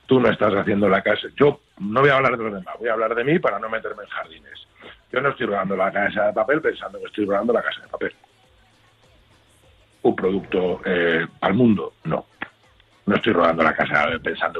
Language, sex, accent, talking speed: Spanish, male, Spanish, 215 wpm